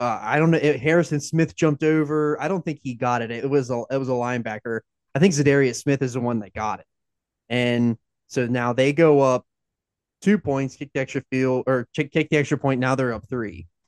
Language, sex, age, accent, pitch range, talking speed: English, male, 20-39, American, 120-150 Hz, 235 wpm